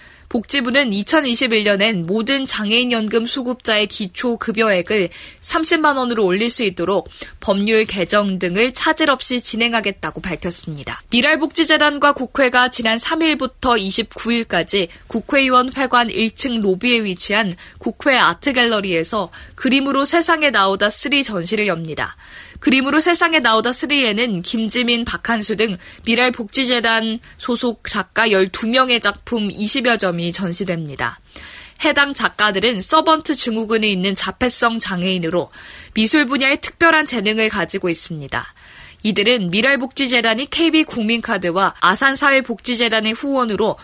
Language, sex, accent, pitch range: Korean, female, native, 195-260 Hz